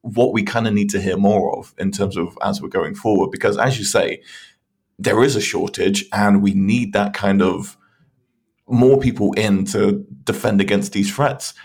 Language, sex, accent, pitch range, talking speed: English, male, British, 100-115 Hz, 195 wpm